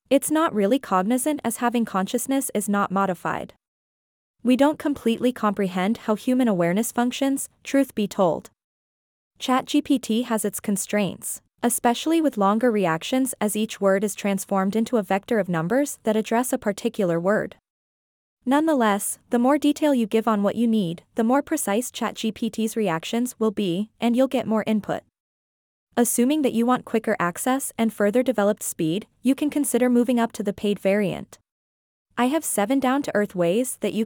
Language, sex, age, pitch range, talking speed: English, female, 20-39, 200-250 Hz, 160 wpm